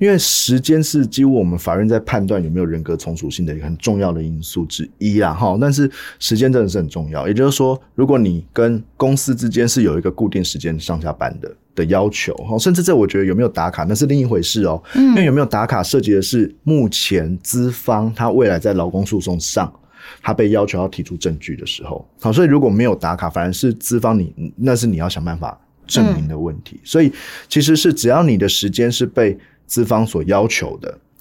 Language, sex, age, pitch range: Chinese, male, 20-39, 90-130 Hz